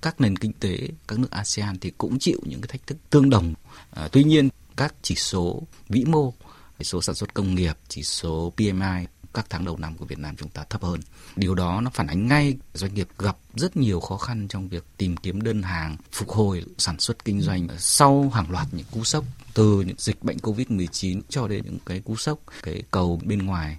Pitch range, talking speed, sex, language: 85-110 Hz, 220 wpm, male, Vietnamese